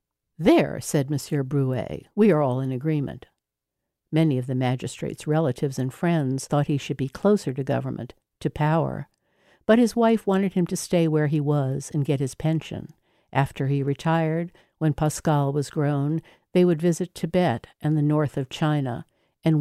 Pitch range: 140-175 Hz